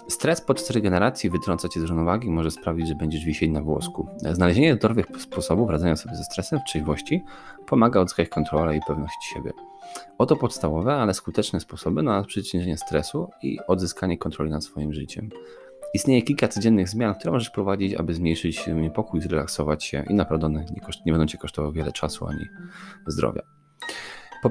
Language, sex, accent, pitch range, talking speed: Polish, male, native, 80-115 Hz, 170 wpm